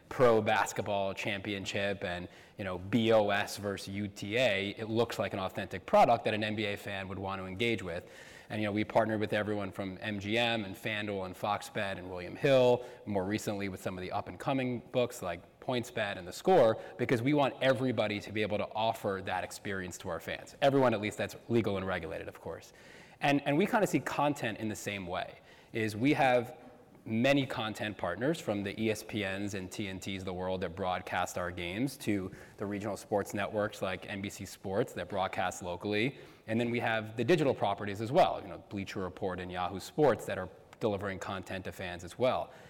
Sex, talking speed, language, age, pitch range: male, 195 wpm, English, 20-39, 95-120 Hz